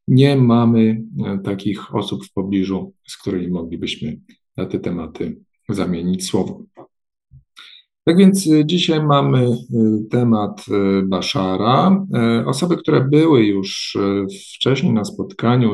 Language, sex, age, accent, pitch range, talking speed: Polish, male, 50-69, native, 100-125 Hz, 105 wpm